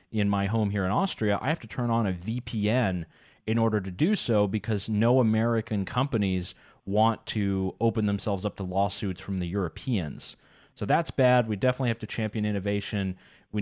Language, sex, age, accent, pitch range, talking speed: English, male, 30-49, American, 100-115 Hz, 185 wpm